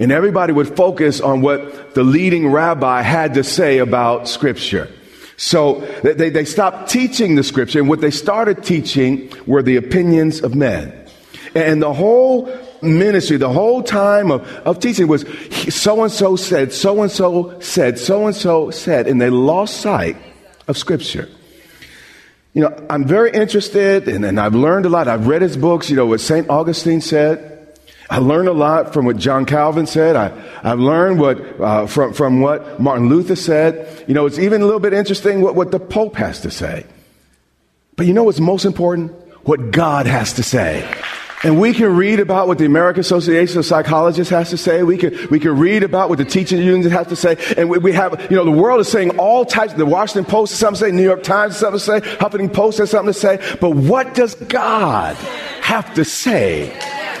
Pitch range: 145-195 Hz